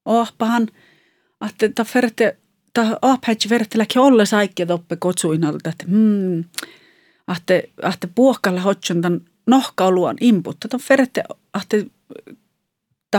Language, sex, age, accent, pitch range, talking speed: English, female, 40-59, Finnish, 170-225 Hz, 105 wpm